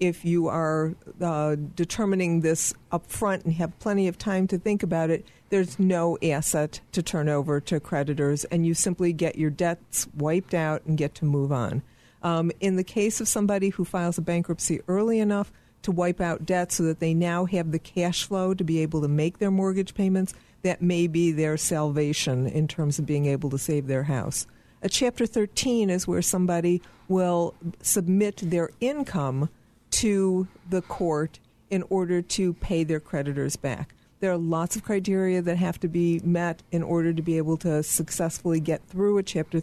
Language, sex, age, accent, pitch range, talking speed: English, female, 50-69, American, 150-185 Hz, 190 wpm